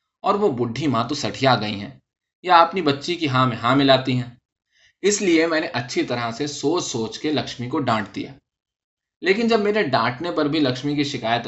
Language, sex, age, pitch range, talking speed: Urdu, male, 20-39, 120-150 Hz, 215 wpm